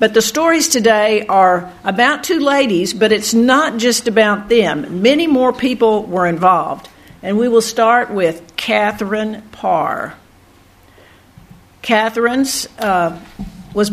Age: 50-69